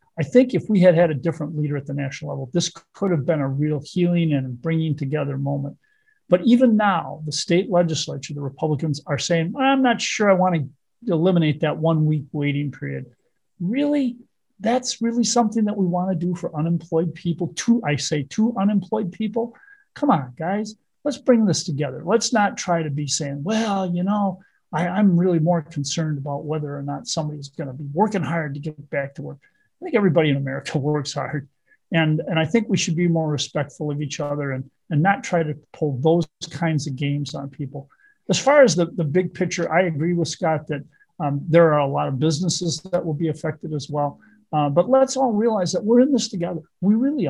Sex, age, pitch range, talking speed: male, 50-69, 150-195 Hz, 215 wpm